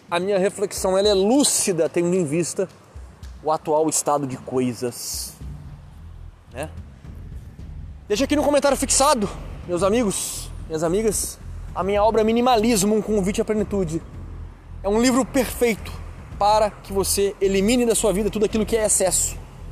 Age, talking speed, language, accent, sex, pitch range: 20-39, 145 wpm, Portuguese, Brazilian, male, 145-210 Hz